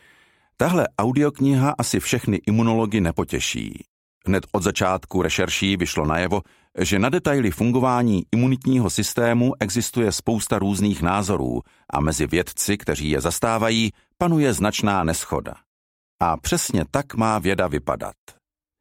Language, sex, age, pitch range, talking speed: Slovak, male, 50-69, 90-120 Hz, 120 wpm